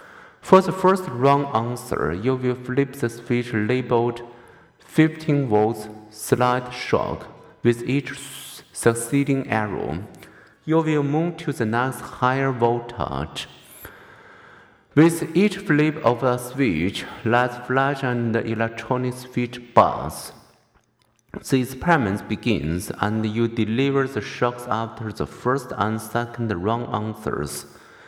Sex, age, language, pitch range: male, 50-69, Chinese, 105-125 Hz